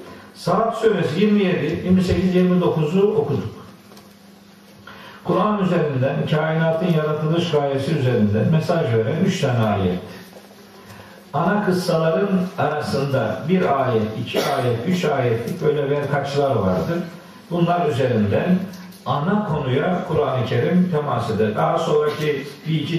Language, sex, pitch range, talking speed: Turkish, male, 140-195 Hz, 100 wpm